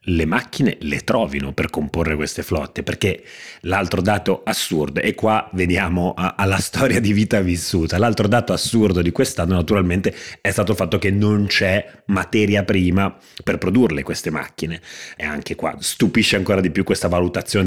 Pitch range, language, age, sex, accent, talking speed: 85-105 Hz, Italian, 30-49, male, native, 165 wpm